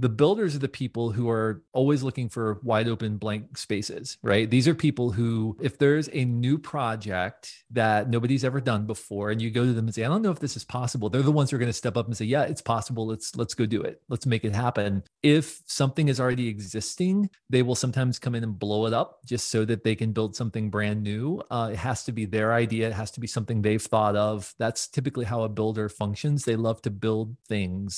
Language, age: English, 40-59